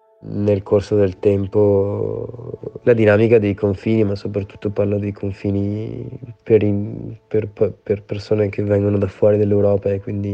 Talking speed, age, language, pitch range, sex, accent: 135 wpm, 20-39, Italian, 95-105 Hz, male, native